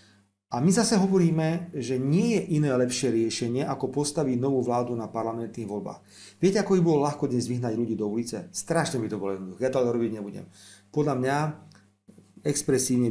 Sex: male